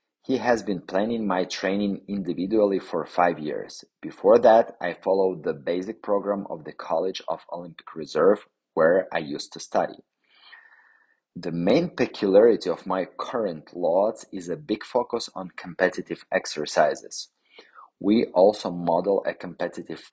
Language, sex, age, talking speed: English, male, 30-49, 140 wpm